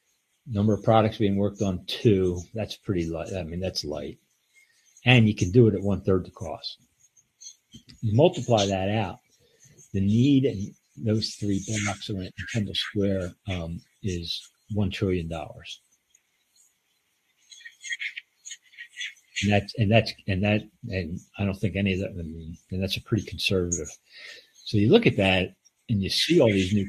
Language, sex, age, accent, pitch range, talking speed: English, male, 50-69, American, 90-115 Hz, 160 wpm